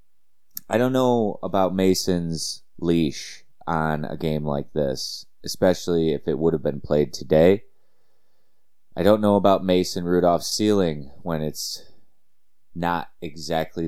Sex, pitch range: male, 80-95 Hz